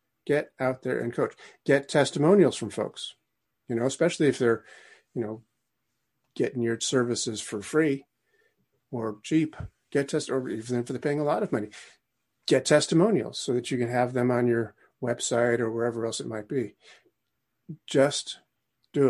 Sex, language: male, English